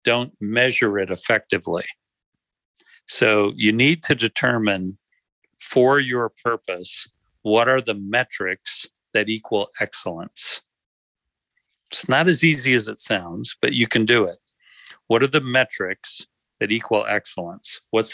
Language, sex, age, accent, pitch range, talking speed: English, male, 50-69, American, 105-135 Hz, 130 wpm